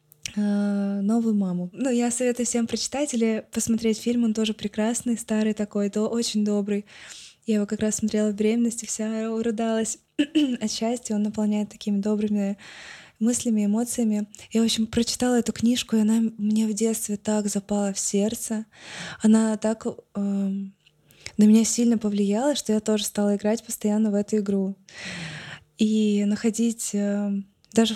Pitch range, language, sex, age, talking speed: 205-225 Hz, Russian, female, 20-39, 155 wpm